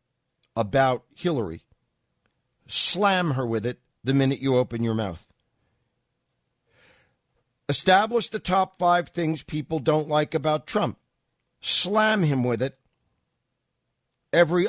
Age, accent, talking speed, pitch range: 50-69, American, 110 wpm, 120-190 Hz